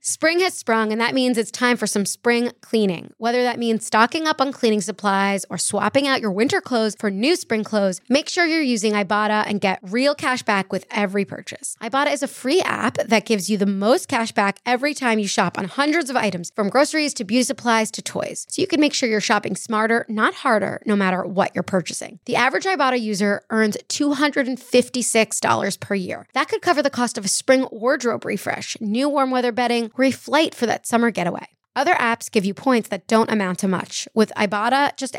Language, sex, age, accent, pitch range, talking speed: English, female, 20-39, American, 205-255 Hz, 215 wpm